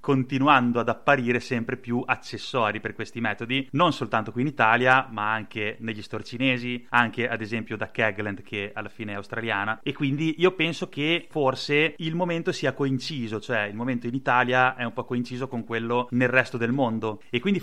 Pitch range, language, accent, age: 110-130 Hz, Italian, native, 30-49